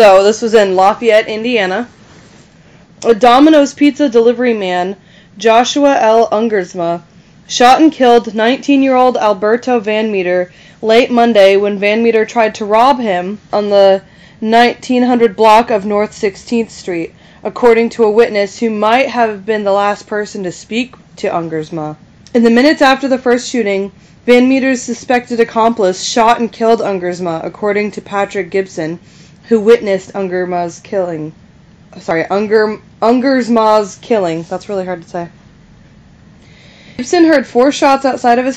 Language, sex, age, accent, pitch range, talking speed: English, female, 20-39, American, 190-235 Hz, 145 wpm